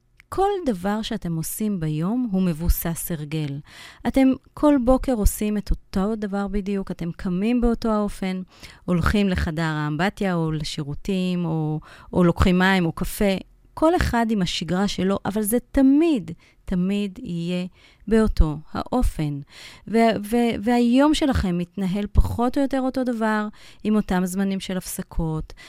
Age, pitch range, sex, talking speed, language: 30-49, 170-225 Hz, female, 135 wpm, Hebrew